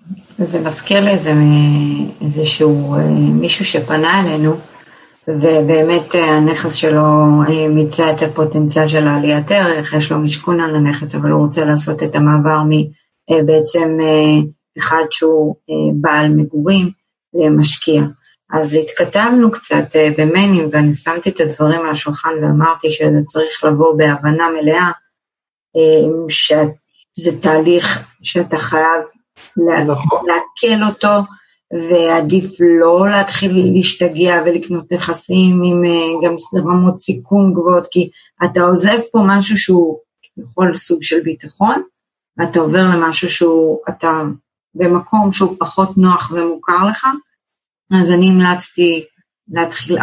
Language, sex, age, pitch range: Hebrew, female, 30-49, 155-180 Hz